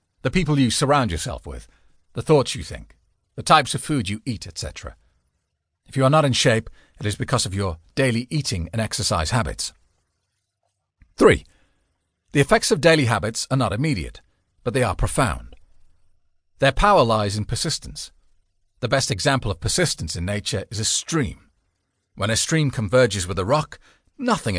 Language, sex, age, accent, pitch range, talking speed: English, male, 40-59, British, 90-130 Hz, 170 wpm